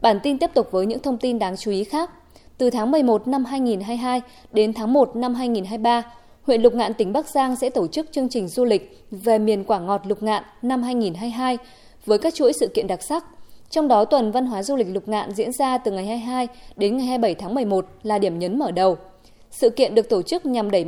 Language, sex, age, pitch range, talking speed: Vietnamese, female, 20-39, 210-265 Hz, 235 wpm